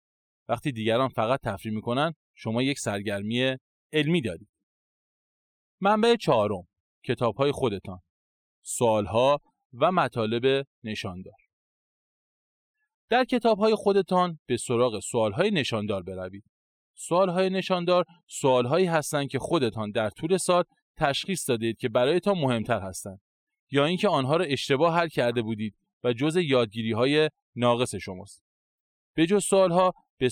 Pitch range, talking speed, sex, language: 115-175 Hz, 115 wpm, male, Persian